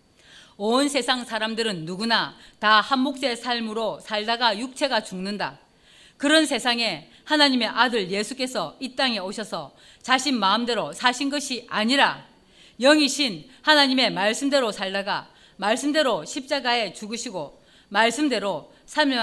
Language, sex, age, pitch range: Korean, female, 40-59, 220-275 Hz